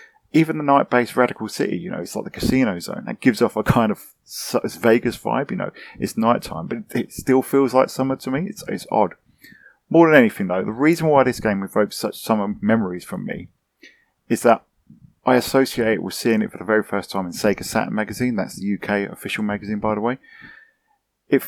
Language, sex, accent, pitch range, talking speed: English, male, British, 105-130 Hz, 210 wpm